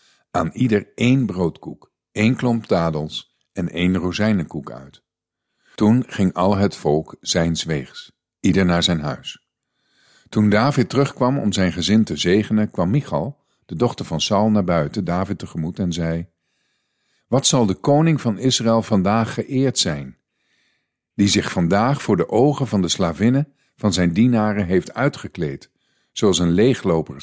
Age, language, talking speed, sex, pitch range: 50-69, Dutch, 150 wpm, male, 85-115 Hz